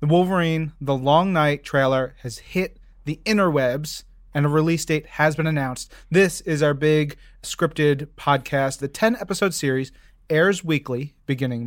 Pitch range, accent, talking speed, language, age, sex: 135-175 Hz, American, 150 wpm, English, 30-49, male